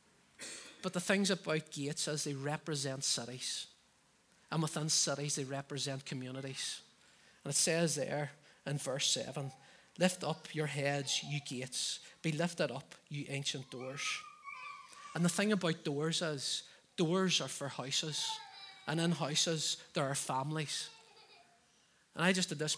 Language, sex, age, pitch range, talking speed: English, male, 30-49, 140-165 Hz, 145 wpm